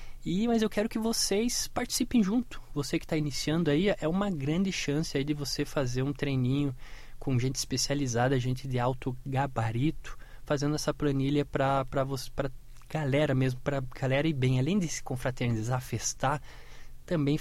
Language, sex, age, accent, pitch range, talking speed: Portuguese, male, 20-39, Brazilian, 125-155 Hz, 160 wpm